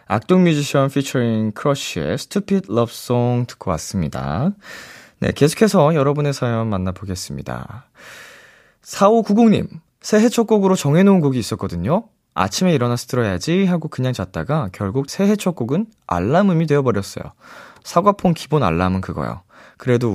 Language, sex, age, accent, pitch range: Korean, male, 20-39, native, 100-170 Hz